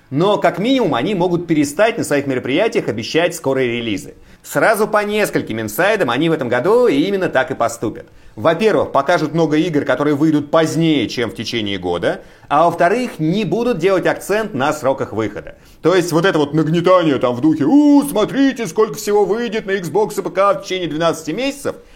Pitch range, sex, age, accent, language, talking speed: 130-210 Hz, male, 30-49, native, Russian, 180 wpm